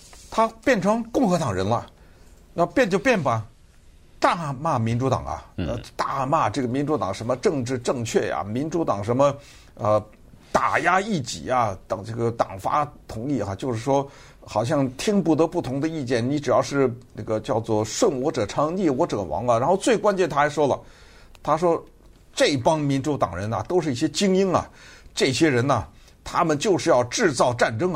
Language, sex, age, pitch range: Chinese, male, 60-79, 110-155 Hz